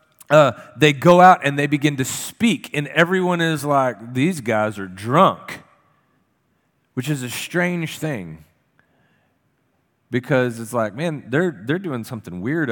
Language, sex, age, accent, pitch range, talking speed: English, male, 40-59, American, 115-150 Hz, 145 wpm